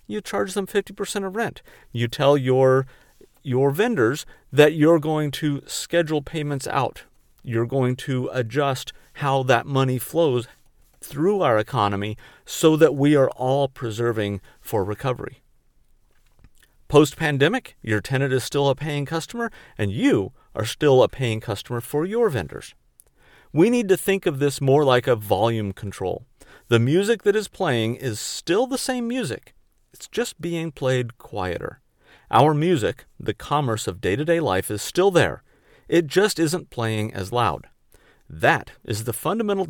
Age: 50-69